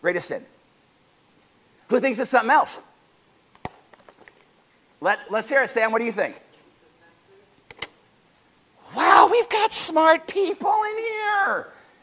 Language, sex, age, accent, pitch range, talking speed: English, male, 50-69, American, 235-335 Hz, 120 wpm